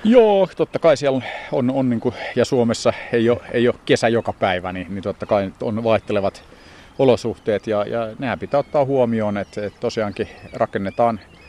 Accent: native